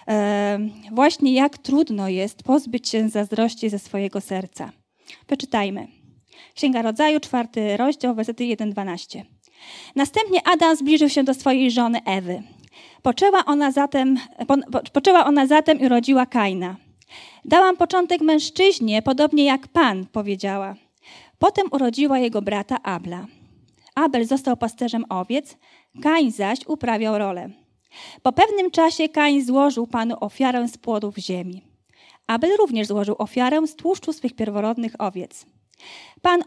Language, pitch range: Polish, 215-290 Hz